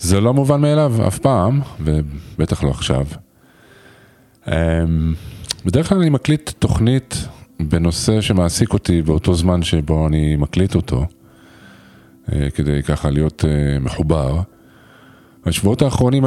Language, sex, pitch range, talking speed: Hebrew, male, 85-120 Hz, 105 wpm